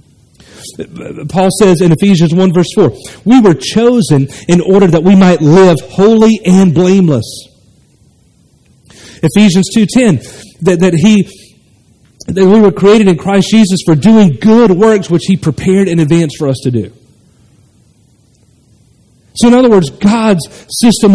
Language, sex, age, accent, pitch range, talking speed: English, male, 40-59, American, 125-185 Hz, 140 wpm